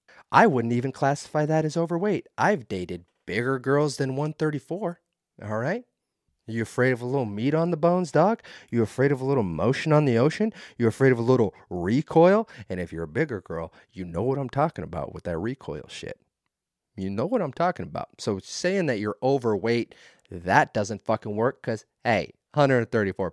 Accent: American